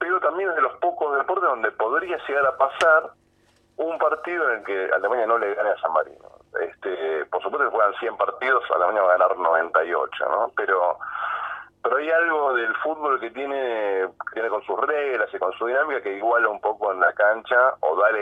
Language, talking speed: Spanish, 210 wpm